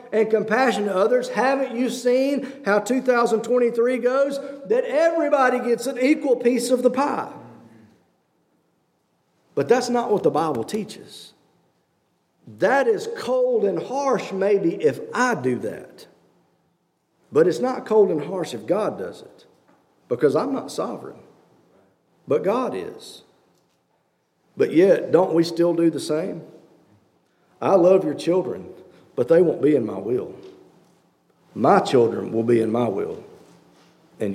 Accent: American